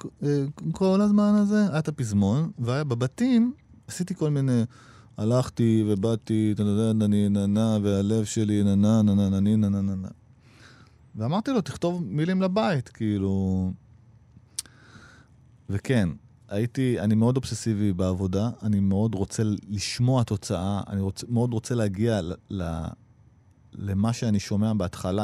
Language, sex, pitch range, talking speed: Hebrew, male, 105-130 Hz, 120 wpm